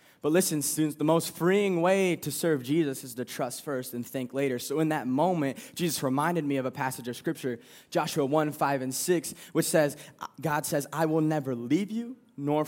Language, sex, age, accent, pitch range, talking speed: English, male, 20-39, American, 140-180 Hz, 210 wpm